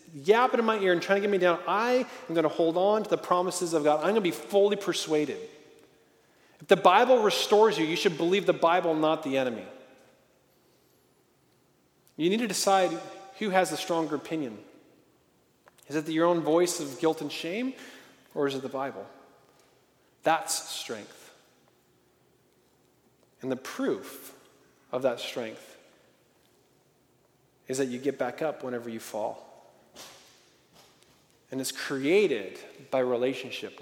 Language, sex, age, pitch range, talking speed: English, male, 40-59, 135-185 Hz, 150 wpm